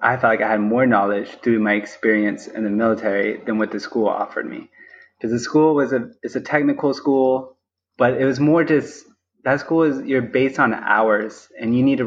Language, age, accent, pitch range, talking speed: English, 20-39, American, 105-125 Hz, 220 wpm